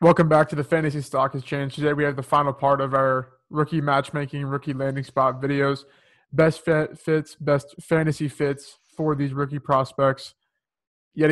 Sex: male